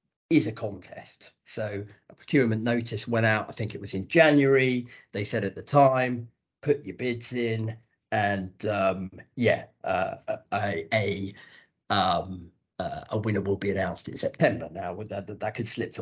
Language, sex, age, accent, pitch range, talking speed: English, male, 40-59, British, 100-135 Hz, 170 wpm